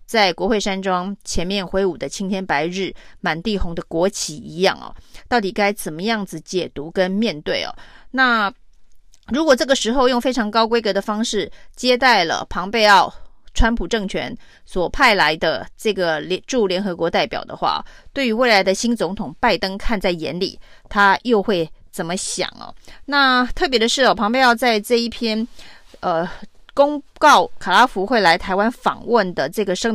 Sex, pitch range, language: female, 180-230 Hz, Chinese